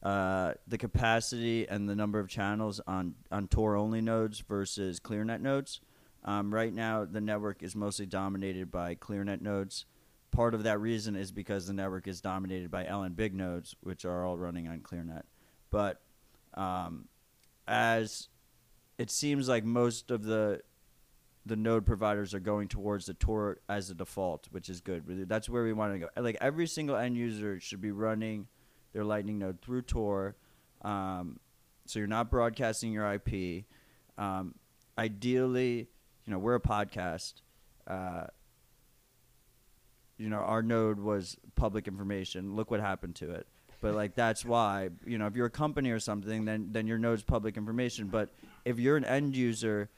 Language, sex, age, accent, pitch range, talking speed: English, male, 30-49, American, 100-115 Hz, 165 wpm